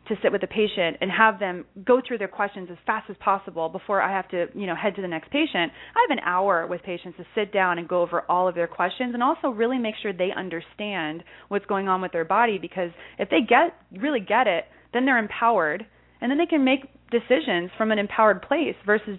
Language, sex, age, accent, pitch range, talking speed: English, female, 30-49, American, 180-230 Hz, 240 wpm